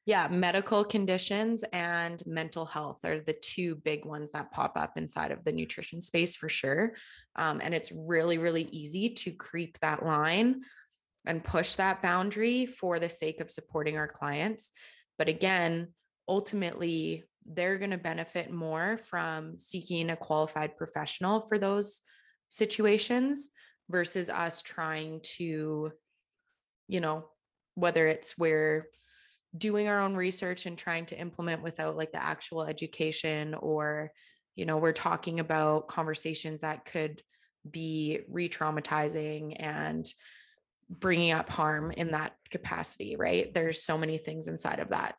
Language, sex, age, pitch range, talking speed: English, female, 20-39, 155-185 Hz, 140 wpm